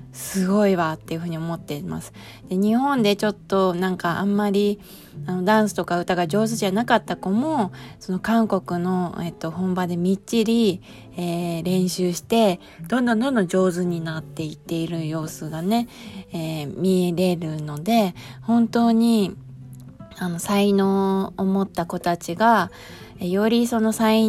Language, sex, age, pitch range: Japanese, female, 20-39, 165-210 Hz